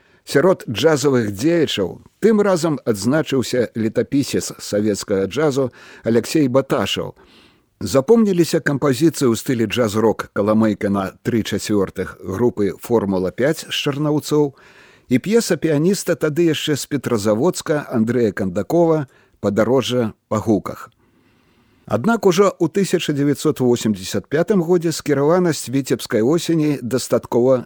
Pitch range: 115-170 Hz